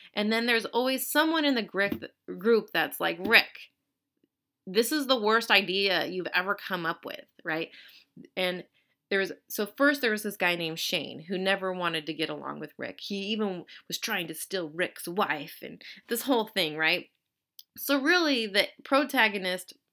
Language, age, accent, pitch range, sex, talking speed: English, 30-49, American, 180-250 Hz, female, 170 wpm